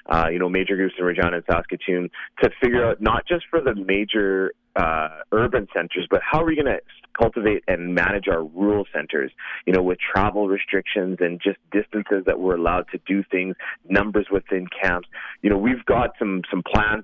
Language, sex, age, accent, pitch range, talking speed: English, male, 30-49, American, 90-105 Hz, 195 wpm